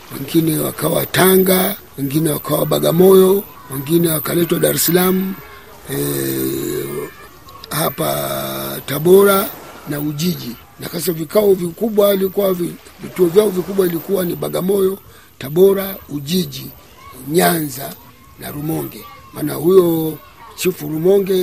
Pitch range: 155-190 Hz